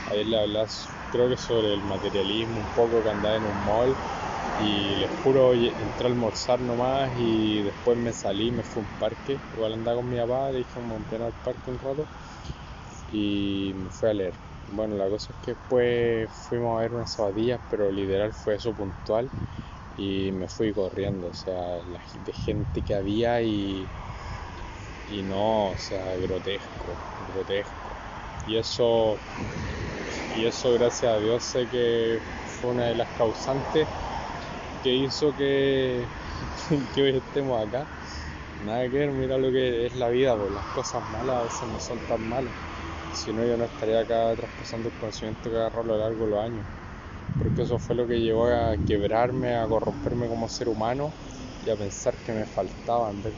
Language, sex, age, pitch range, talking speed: Spanish, male, 20-39, 100-120 Hz, 185 wpm